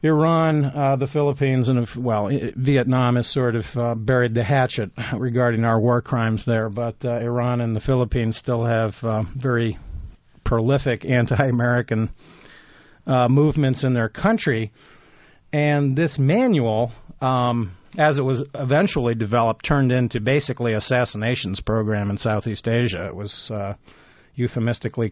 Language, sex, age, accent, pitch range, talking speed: English, male, 50-69, American, 115-130 Hz, 135 wpm